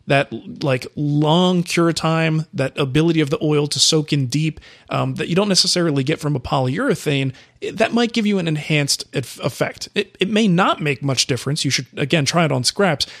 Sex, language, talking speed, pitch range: male, English, 200 wpm, 140-170 Hz